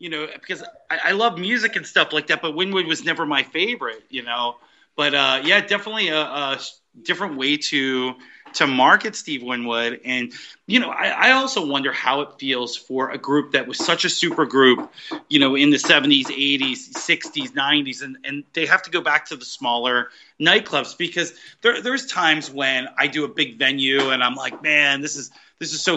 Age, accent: 30-49, American